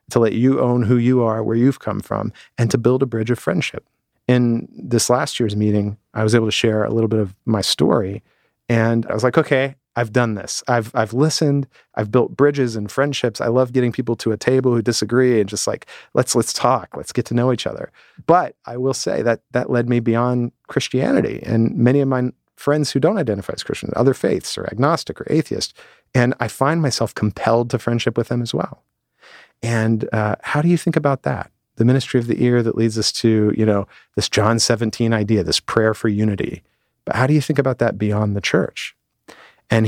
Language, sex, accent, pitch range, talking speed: English, male, American, 110-125 Hz, 220 wpm